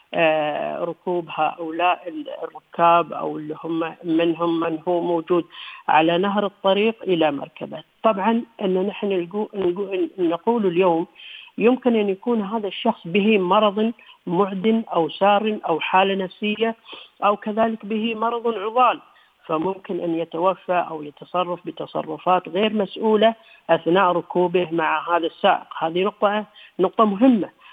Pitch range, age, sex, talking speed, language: 170-210 Hz, 50-69, female, 120 wpm, Arabic